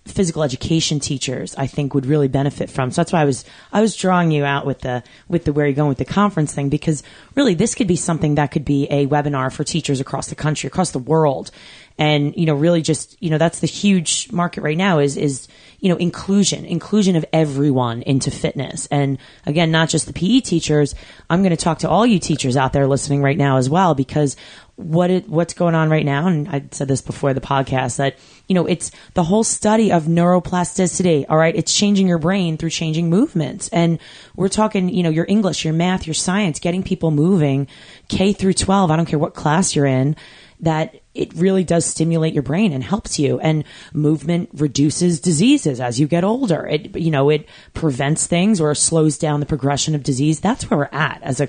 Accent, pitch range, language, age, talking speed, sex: American, 145-180 Hz, English, 20-39, 220 wpm, female